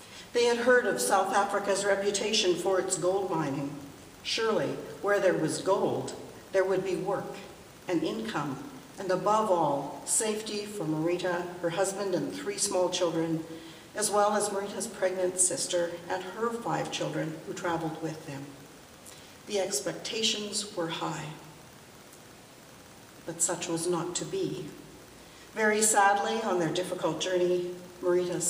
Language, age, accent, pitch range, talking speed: English, 60-79, American, 165-200 Hz, 135 wpm